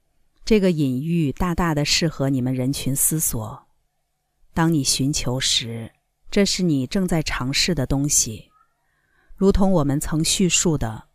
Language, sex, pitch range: Chinese, female, 135-175 Hz